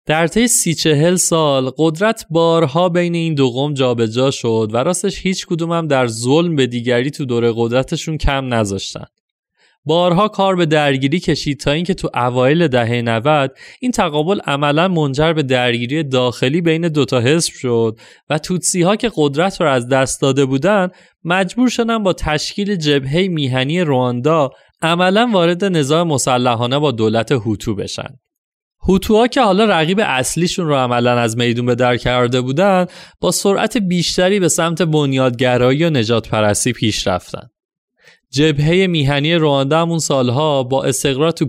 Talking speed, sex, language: 155 wpm, male, Persian